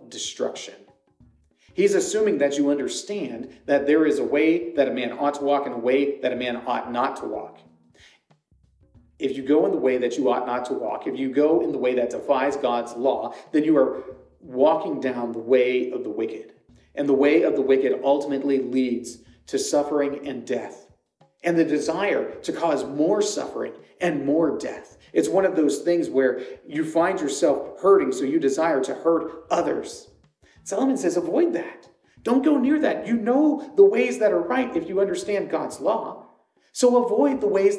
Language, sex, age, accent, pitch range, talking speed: English, male, 40-59, American, 130-215 Hz, 190 wpm